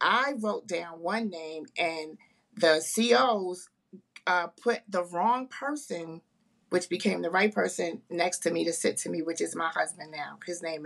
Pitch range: 165-210 Hz